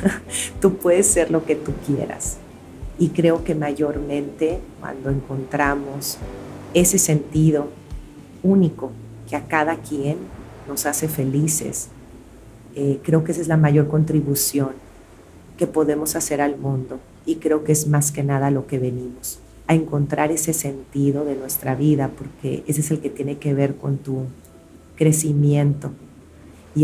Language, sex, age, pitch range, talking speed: Spanish, female, 40-59, 135-150 Hz, 145 wpm